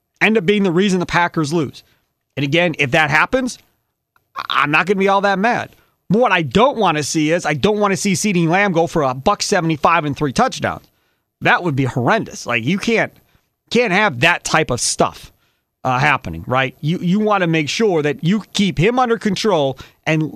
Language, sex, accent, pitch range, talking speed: English, male, American, 145-200 Hz, 220 wpm